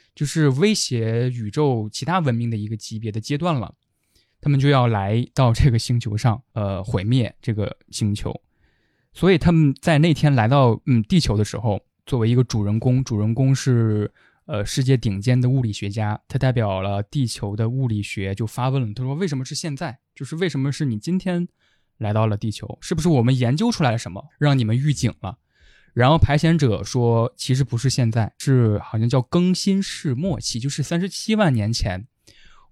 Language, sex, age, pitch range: Chinese, male, 20-39, 110-145 Hz